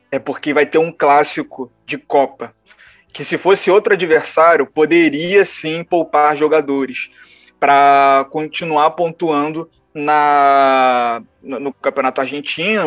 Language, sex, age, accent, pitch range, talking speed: Portuguese, male, 20-39, Brazilian, 145-165 Hz, 115 wpm